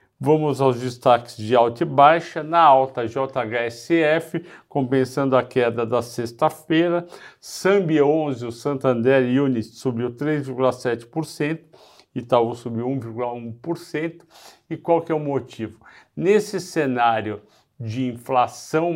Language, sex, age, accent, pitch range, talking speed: Portuguese, male, 50-69, Brazilian, 115-145 Hz, 115 wpm